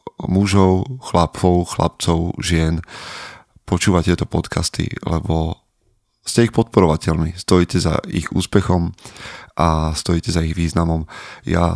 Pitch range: 85-100 Hz